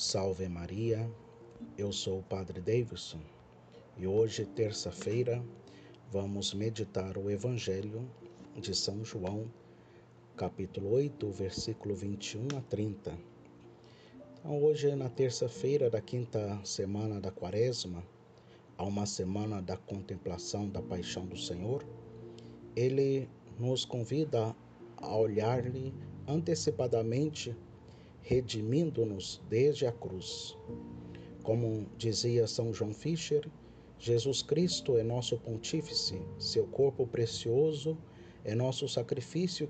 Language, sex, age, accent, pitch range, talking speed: Portuguese, male, 50-69, Brazilian, 100-130 Hz, 100 wpm